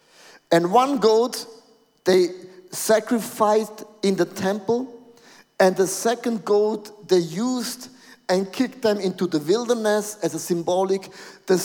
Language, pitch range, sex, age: English, 175-230 Hz, male, 50-69